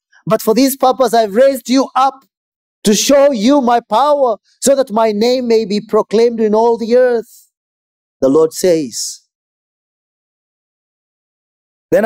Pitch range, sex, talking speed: 175-250 Hz, male, 140 wpm